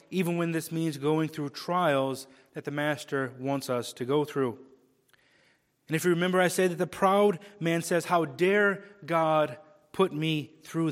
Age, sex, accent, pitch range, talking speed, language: 30-49, male, American, 140-175 Hz, 175 wpm, English